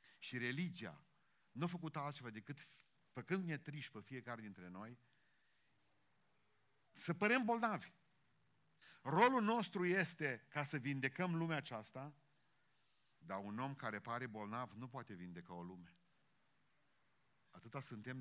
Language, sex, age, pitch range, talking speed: Romanian, male, 50-69, 115-145 Hz, 120 wpm